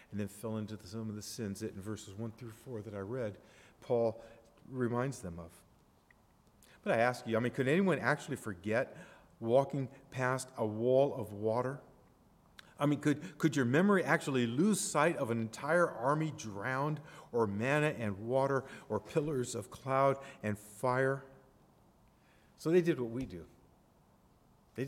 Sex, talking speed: male, 160 wpm